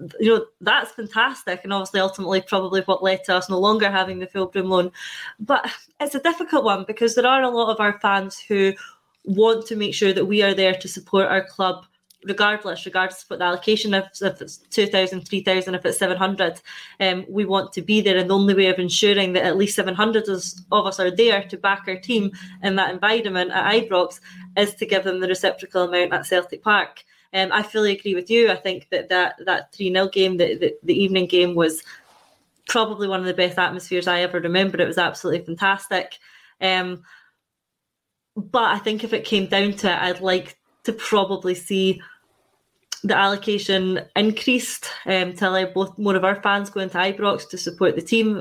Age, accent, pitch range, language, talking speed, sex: 20-39, British, 185-205 Hz, English, 205 wpm, female